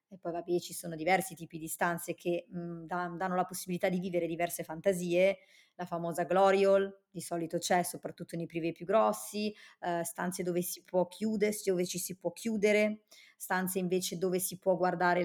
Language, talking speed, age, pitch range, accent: Italian, 175 wpm, 30-49, 175-210 Hz, native